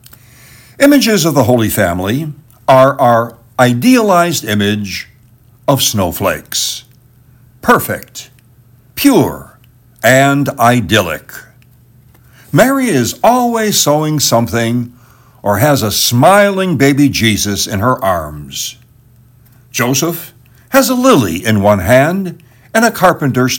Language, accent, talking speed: English, American, 100 wpm